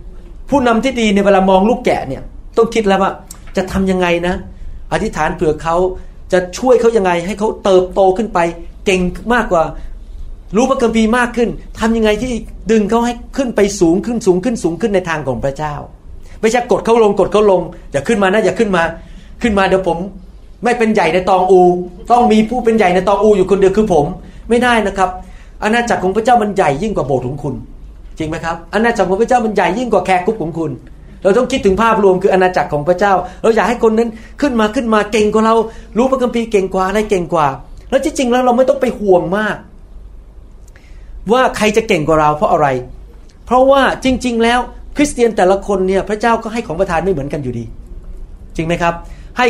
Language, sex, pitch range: Thai, male, 170-230 Hz